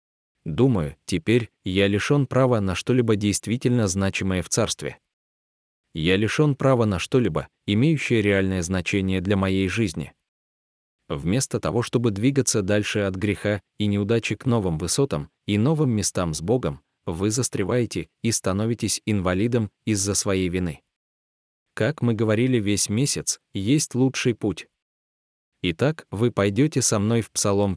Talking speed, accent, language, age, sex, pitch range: 135 wpm, native, Russian, 20-39, male, 90-120 Hz